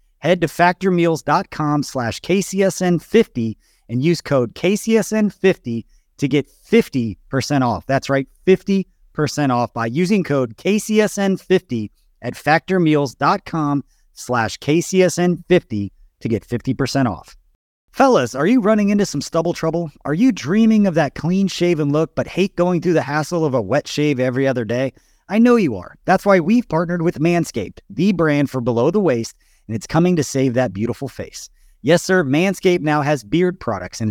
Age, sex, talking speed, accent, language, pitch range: 30-49, male, 160 wpm, American, English, 130-180 Hz